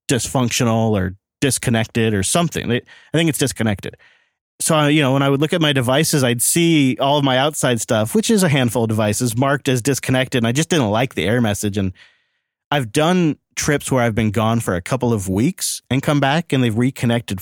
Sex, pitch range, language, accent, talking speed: male, 110-145 Hz, English, American, 215 wpm